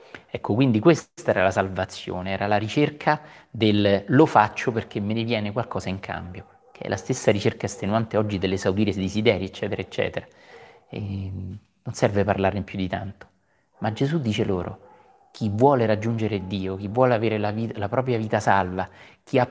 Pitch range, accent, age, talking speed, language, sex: 100-115 Hz, native, 30-49, 170 wpm, Italian, male